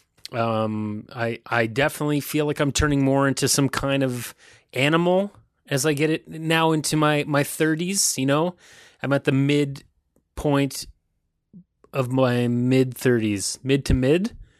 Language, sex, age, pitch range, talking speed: English, male, 30-49, 115-160 Hz, 150 wpm